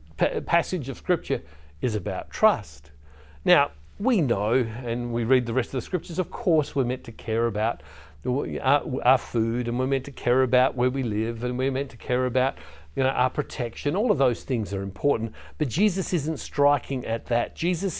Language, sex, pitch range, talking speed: English, male, 110-160 Hz, 195 wpm